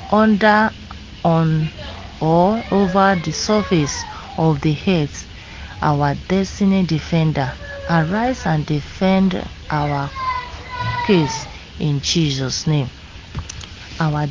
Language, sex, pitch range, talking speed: English, female, 150-190 Hz, 90 wpm